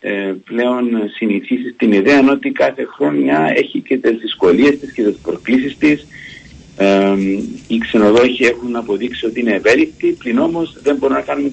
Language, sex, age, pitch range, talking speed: Greek, male, 50-69, 95-130 Hz, 150 wpm